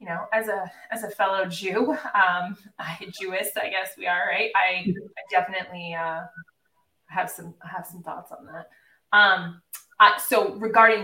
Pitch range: 185-250 Hz